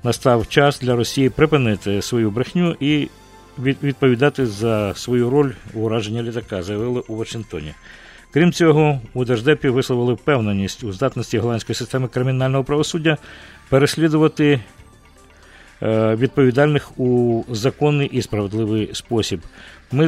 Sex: male